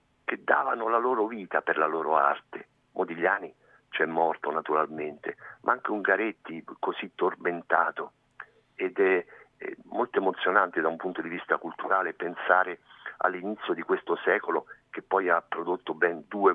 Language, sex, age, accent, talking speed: Italian, male, 50-69, native, 145 wpm